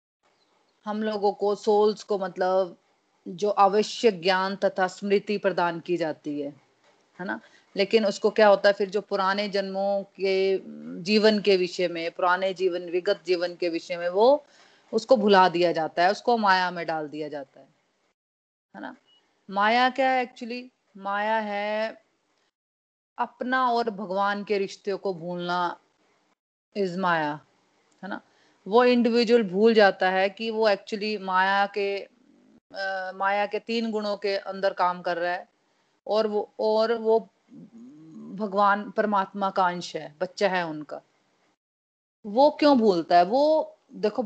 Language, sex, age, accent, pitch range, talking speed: Hindi, female, 30-49, native, 185-220 Hz, 150 wpm